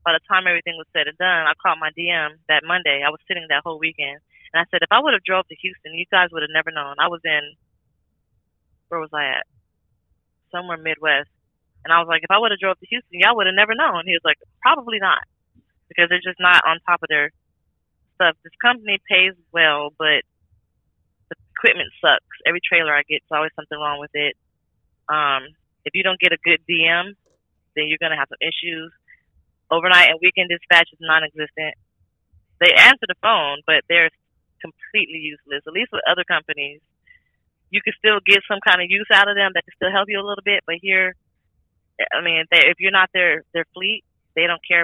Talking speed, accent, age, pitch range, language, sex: 215 wpm, American, 20-39, 145-175 Hz, English, female